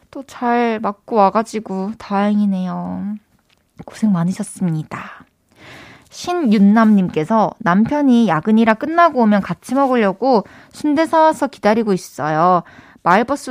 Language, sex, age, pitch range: Korean, female, 20-39, 195-240 Hz